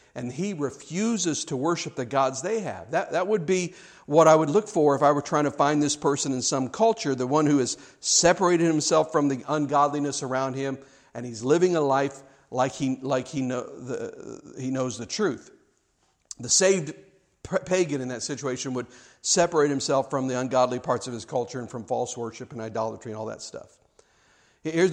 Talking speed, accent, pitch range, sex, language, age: 190 wpm, American, 125-155 Hz, male, English, 50-69